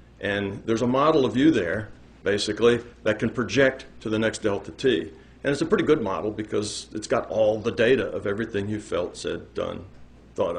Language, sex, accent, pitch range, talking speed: English, male, American, 100-135 Hz, 200 wpm